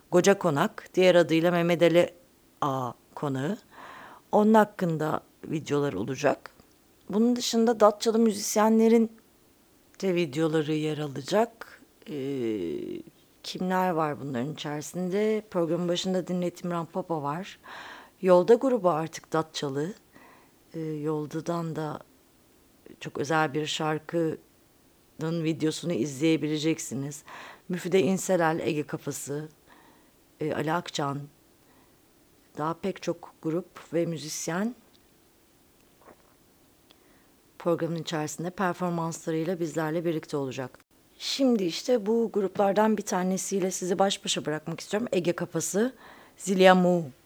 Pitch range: 155-185 Hz